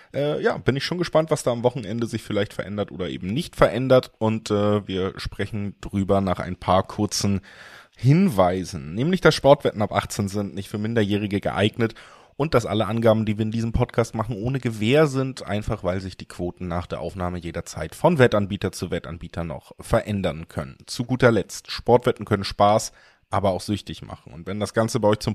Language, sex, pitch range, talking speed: German, male, 100-125 Hz, 195 wpm